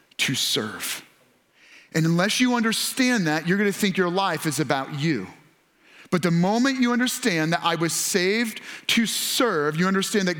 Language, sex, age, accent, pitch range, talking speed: English, male, 30-49, American, 180-225 Hz, 165 wpm